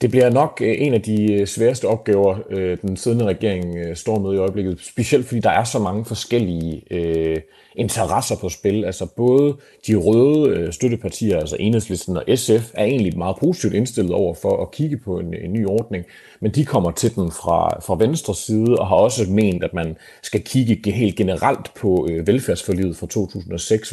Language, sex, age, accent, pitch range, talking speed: Danish, male, 30-49, native, 90-115 Hz, 180 wpm